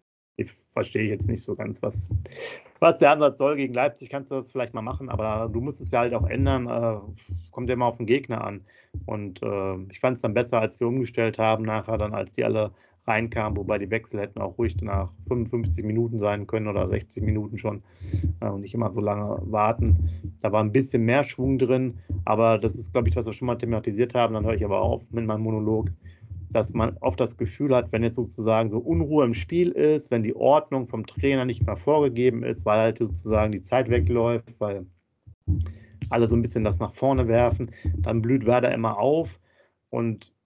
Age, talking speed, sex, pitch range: 30-49, 210 wpm, male, 100-120 Hz